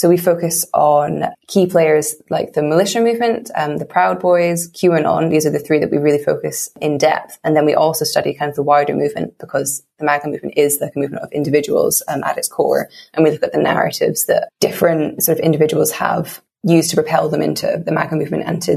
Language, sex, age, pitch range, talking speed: English, female, 20-39, 155-180 Hz, 225 wpm